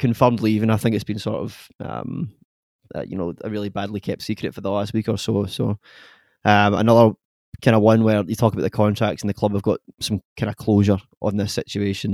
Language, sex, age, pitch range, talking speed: English, male, 20-39, 100-115 Hz, 235 wpm